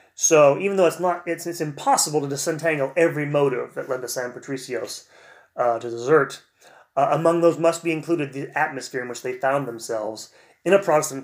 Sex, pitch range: male, 130-160 Hz